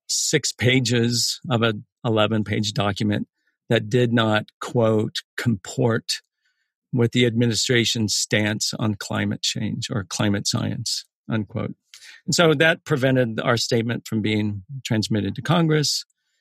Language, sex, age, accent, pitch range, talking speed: English, male, 50-69, American, 110-130 Hz, 125 wpm